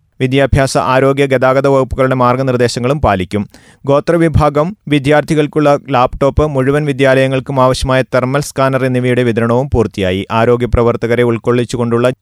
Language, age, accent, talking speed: Malayalam, 30-49, native, 95 wpm